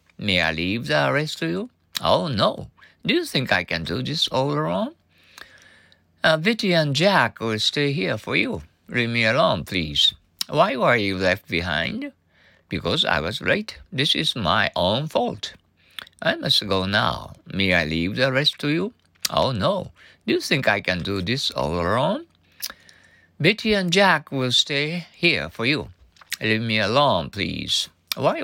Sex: male